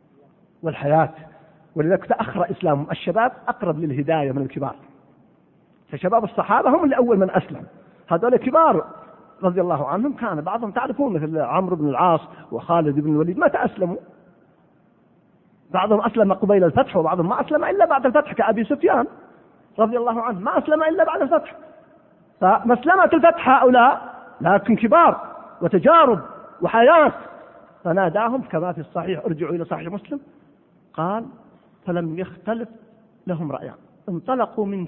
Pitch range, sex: 165-265 Hz, male